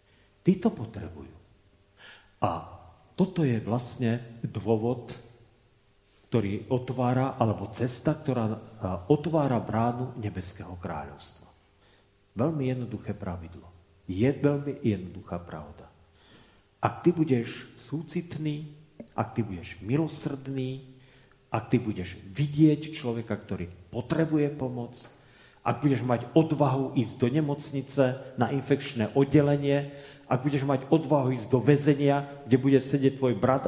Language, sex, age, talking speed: Slovak, male, 40-59, 110 wpm